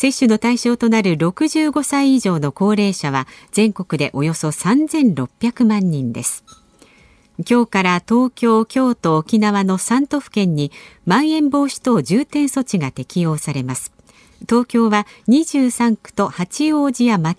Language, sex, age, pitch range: Japanese, female, 50-69, 165-245 Hz